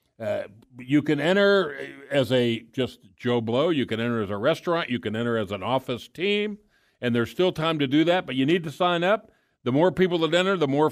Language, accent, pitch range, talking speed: English, American, 110-145 Hz, 230 wpm